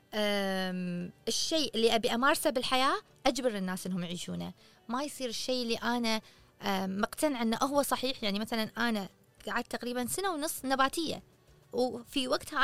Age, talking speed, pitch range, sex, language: 20-39, 135 wpm, 220-285 Hz, female, Arabic